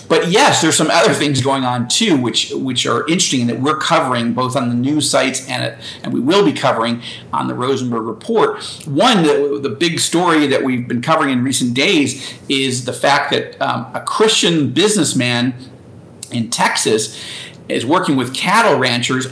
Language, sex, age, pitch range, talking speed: English, male, 50-69, 130-160 Hz, 180 wpm